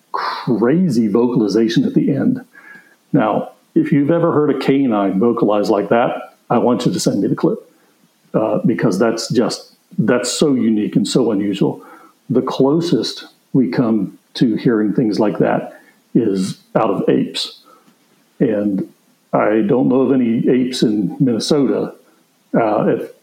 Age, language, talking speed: 60-79, English, 145 wpm